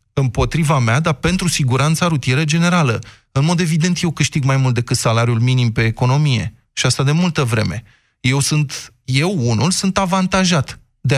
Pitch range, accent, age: 125-170 Hz, native, 20-39